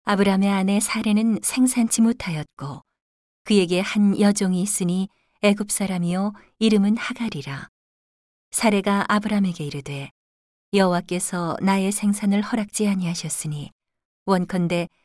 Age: 40-59